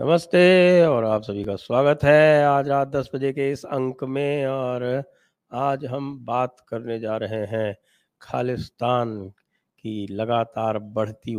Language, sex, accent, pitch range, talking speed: English, male, Indian, 110-145 Hz, 140 wpm